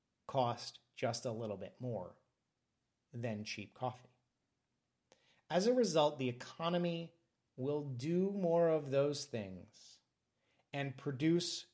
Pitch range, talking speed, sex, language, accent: 120-165 Hz, 110 wpm, male, English, American